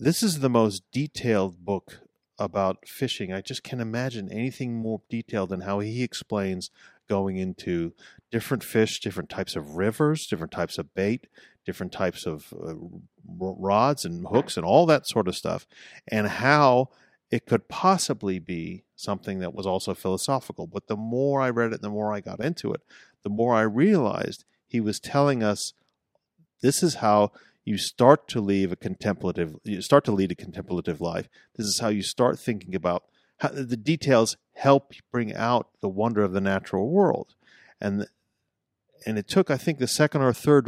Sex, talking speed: male, 180 wpm